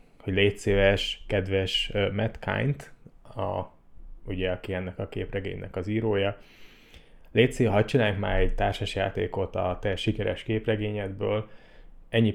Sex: male